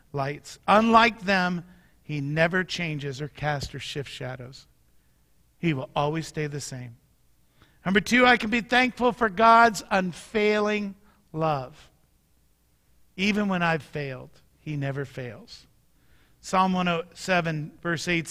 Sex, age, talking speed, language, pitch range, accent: male, 50-69, 125 wpm, English, 145-200 Hz, American